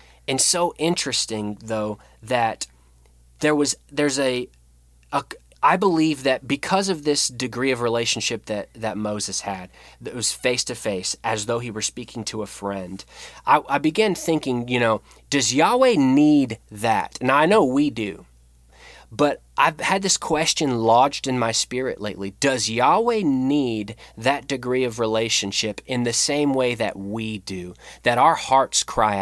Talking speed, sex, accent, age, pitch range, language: 160 wpm, male, American, 20-39, 105-135 Hz, English